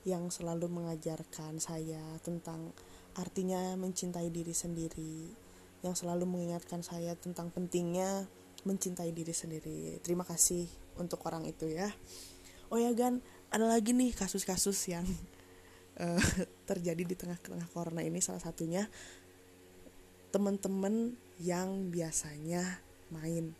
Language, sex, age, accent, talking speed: Indonesian, female, 20-39, native, 110 wpm